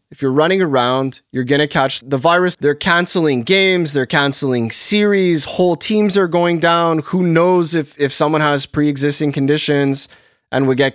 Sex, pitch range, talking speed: male, 125-160 Hz, 175 wpm